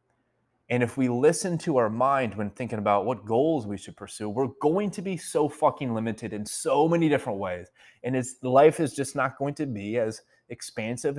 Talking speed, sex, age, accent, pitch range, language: 200 wpm, male, 20-39, American, 110-140 Hz, English